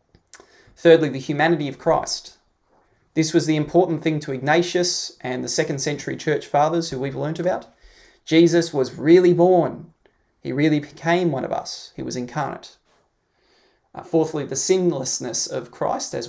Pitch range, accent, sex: 130-170 Hz, Australian, male